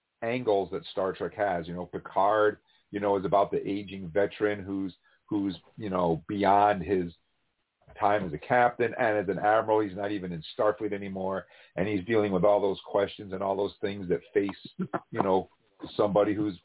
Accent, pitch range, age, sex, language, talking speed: American, 100-130 Hz, 50-69, male, English, 185 wpm